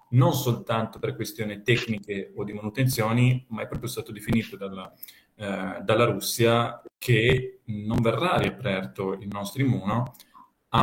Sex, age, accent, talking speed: male, 30-49, native, 140 wpm